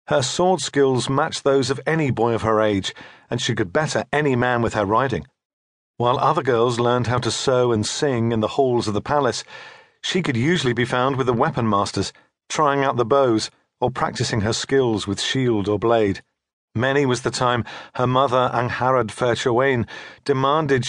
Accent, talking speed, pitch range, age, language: British, 185 wpm, 115-140 Hz, 40-59, English